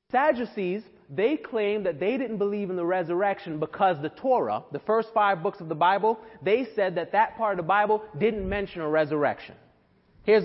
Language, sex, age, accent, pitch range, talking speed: English, male, 30-49, American, 160-210 Hz, 190 wpm